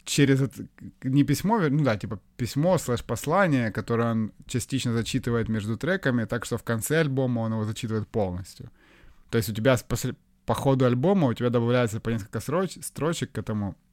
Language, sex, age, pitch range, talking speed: Ukrainian, male, 20-39, 105-130 Hz, 175 wpm